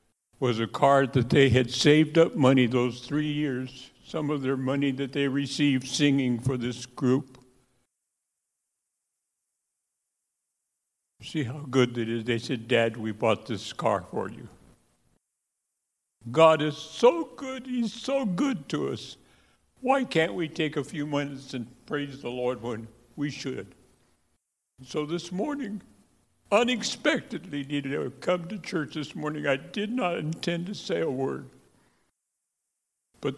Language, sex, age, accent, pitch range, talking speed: English, male, 60-79, American, 125-170 Hz, 145 wpm